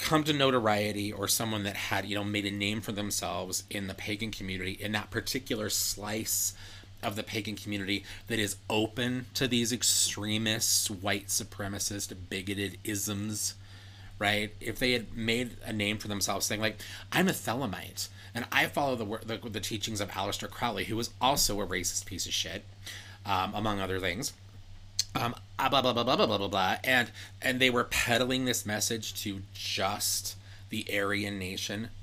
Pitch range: 95-110 Hz